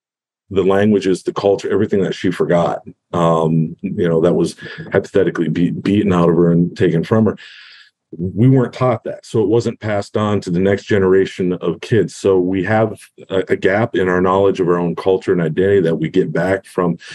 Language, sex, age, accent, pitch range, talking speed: English, male, 40-59, American, 90-105 Hz, 205 wpm